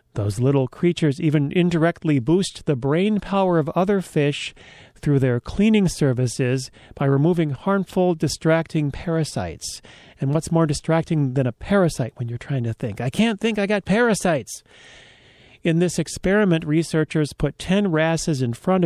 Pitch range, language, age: 135-175 Hz, English, 40-59